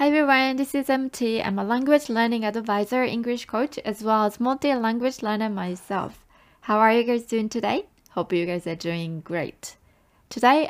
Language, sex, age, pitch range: Japanese, female, 20-39, 185-230 Hz